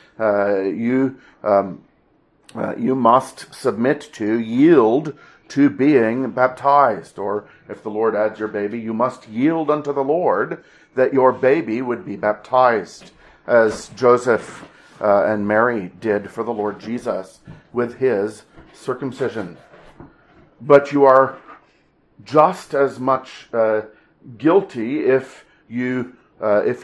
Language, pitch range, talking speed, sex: English, 110-140 Hz, 125 wpm, male